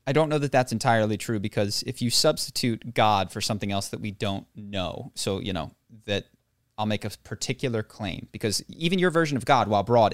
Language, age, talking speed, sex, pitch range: English, 30-49, 215 wpm, male, 105-130 Hz